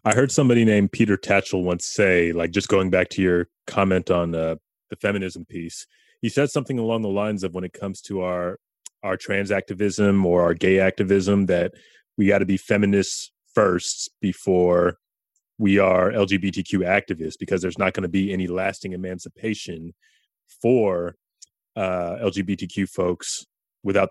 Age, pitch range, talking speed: 30-49, 90-100 Hz, 160 wpm